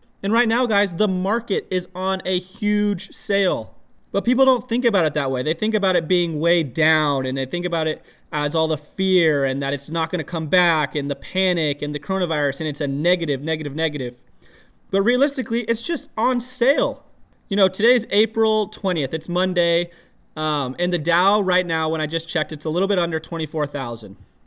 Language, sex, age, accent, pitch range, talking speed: English, male, 20-39, American, 155-215 Hz, 205 wpm